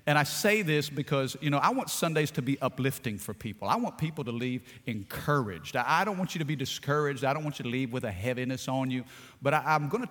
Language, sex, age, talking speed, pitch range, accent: English, male, 40-59, 250 wpm, 125-155 Hz, American